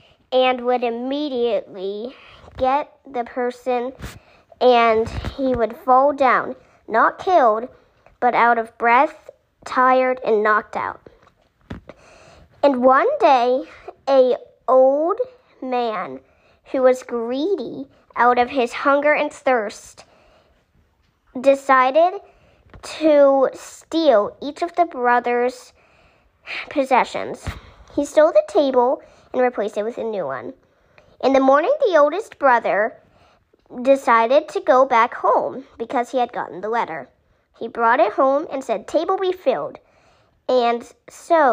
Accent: American